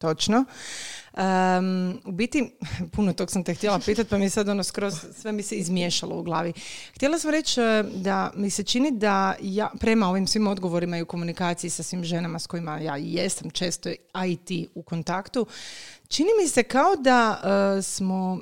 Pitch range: 175-225 Hz